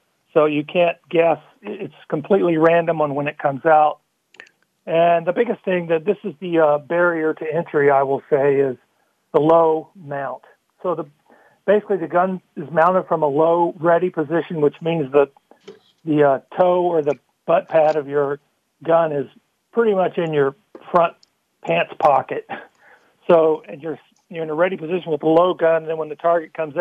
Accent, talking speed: American, 185 wpm